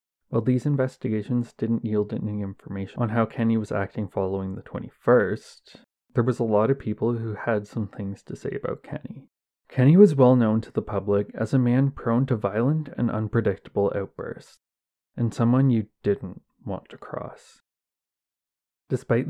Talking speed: 165 wpm